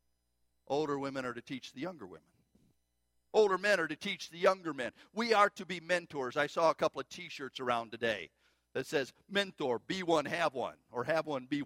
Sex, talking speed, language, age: male, 205 wpm, English, 50-69